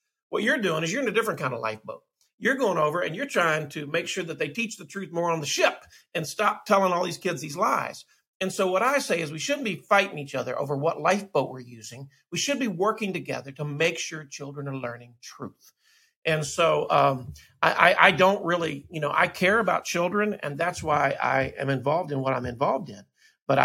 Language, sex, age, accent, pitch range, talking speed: English, male, 50-69, American, 140-195 Hz, 235 wpm